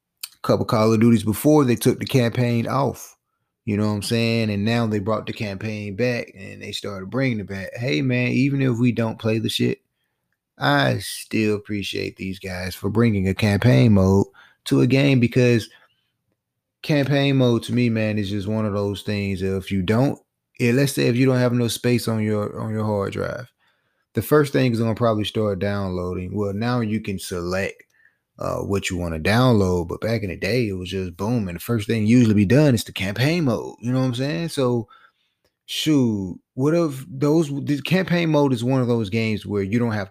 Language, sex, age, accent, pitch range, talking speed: English, male, 30-49, American, 100-125 Hz, 210 wpm